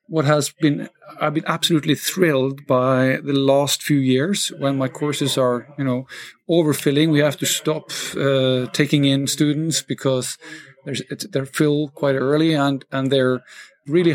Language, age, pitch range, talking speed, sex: English, 50-69, 130-150 Hz, 160 wpm, male